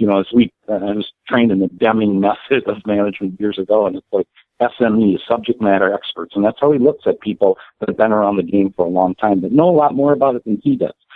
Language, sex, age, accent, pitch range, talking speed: English, male, 50-69, American, 100-135 Hz, 270 wpm